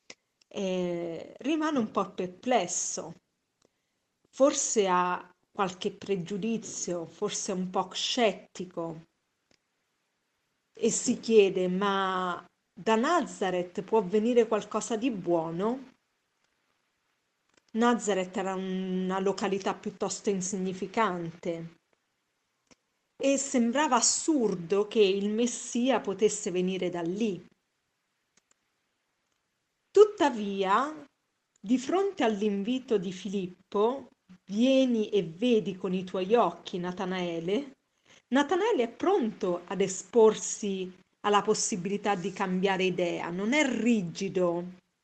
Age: 40-59